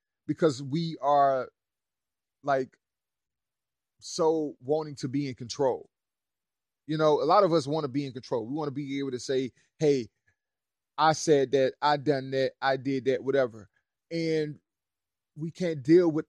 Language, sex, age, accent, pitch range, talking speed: English, male, 30-49, American, 130-160 Hz, 160 wpm